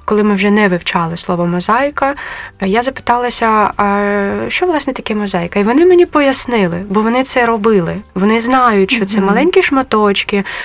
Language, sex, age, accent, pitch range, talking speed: Ukrainian, female, 20-39, native, 180-225 Hz, 160 wpm